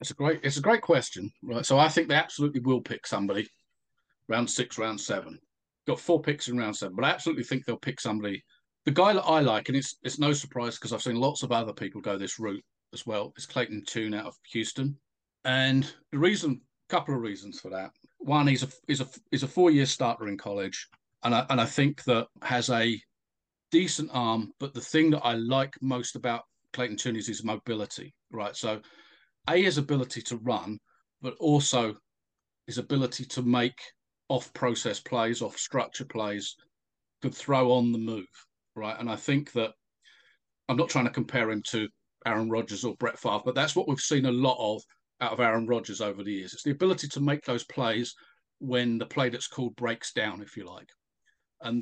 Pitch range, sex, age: 115-140 Hz, male, 40-59